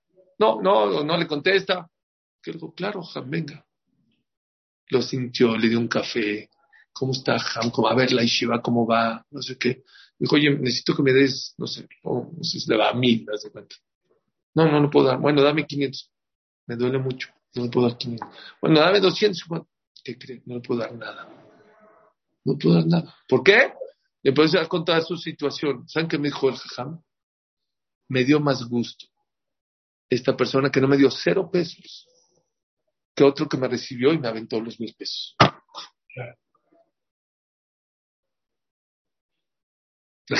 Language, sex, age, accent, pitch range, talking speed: English, male, 50-69, Mexican, 125-175 Hz, 175 wpm